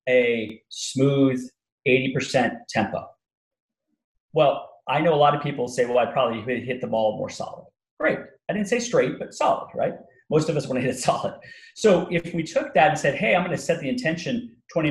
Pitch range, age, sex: 125-210 Hz, 40-59, male